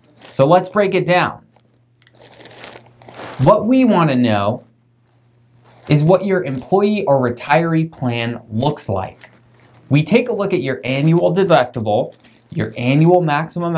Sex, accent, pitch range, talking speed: male, American, 120-180 Hz, 130 wpm